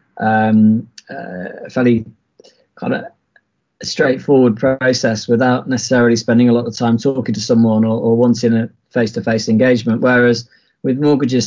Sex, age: male, 20-39